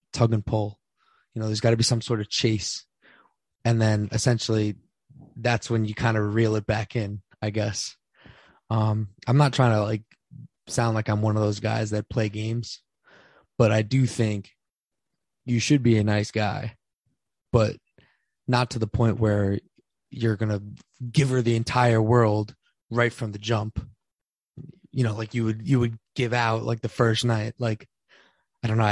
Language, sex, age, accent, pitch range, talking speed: English, male, 20-39, American, 105-120 Hz, 185 wpm